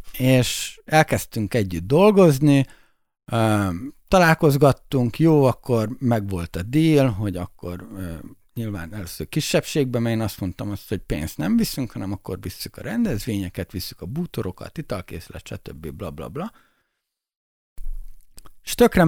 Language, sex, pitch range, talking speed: Hungarian, male, 100-130 Hz, 125 wpm